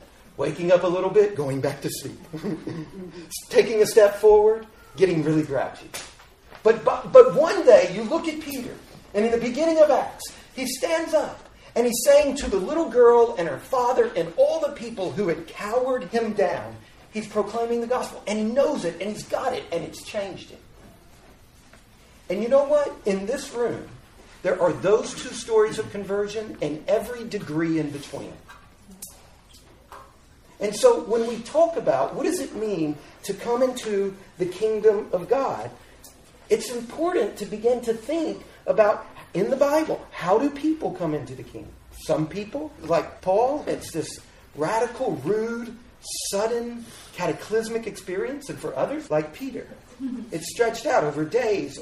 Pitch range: 180-260 Hz